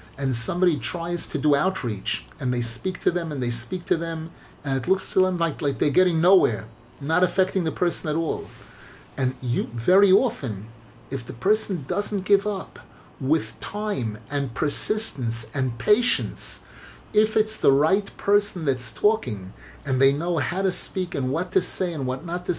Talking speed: 185 wpm